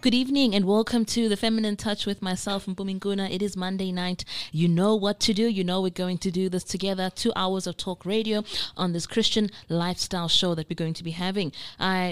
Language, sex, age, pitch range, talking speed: English, female, 20-39, 170-195 Hz, 230 wpm